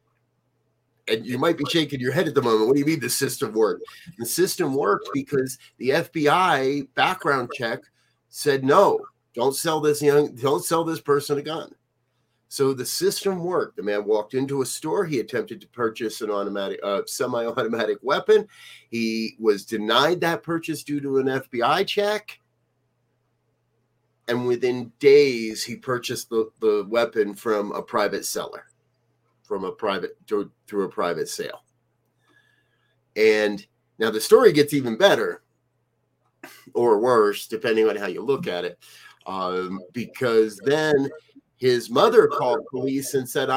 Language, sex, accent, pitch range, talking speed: English, male, American, 130-215 Hz, 155 wpm